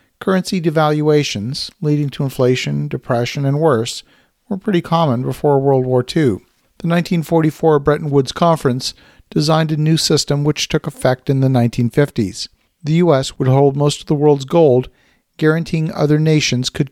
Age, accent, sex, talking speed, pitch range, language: 50-69, American, male, 155 wpm, 135-160 Hz, English